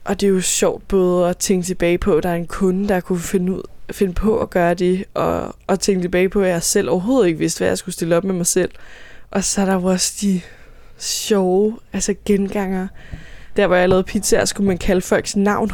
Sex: female